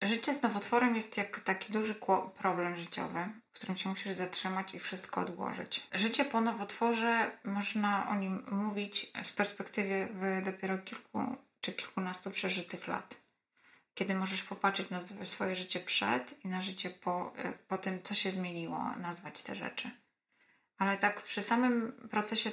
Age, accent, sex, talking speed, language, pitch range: 20-39, native, female, 150 wpm, Polish, 185-210 Hz